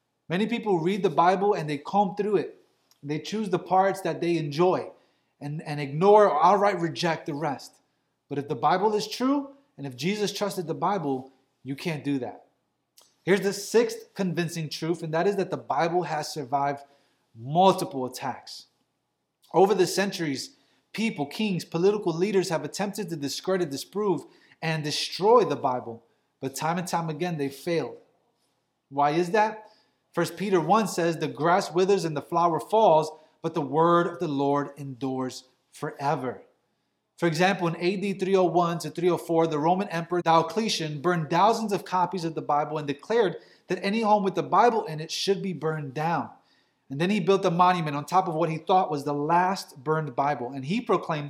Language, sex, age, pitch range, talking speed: English, male, 20-39, 145-190 Hz, 180 wpm